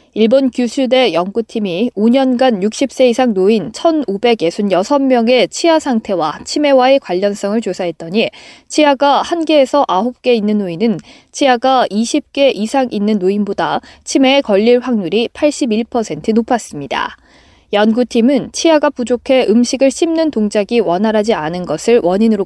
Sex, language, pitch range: female, Korean, 210-270 Hz